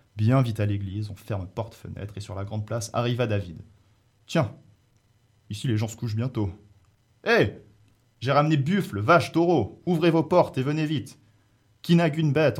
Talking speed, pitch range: 180 wpm, 105-135 Hz